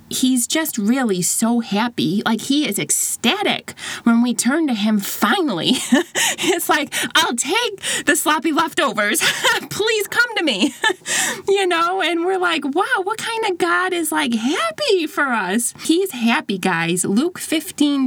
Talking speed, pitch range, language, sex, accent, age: 155 wpm, 190-300 Hz, English, female, American, 20-39